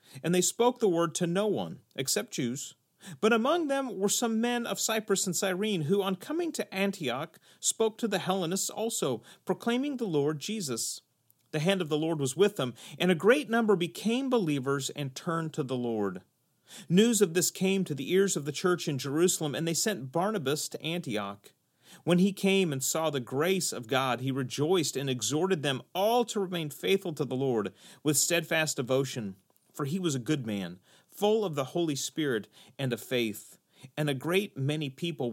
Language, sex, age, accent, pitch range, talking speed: English, male, 40-59, American, 130-190 Hz, 195 wpm